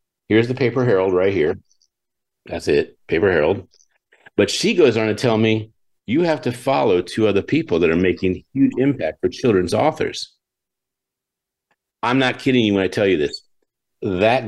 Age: 50-69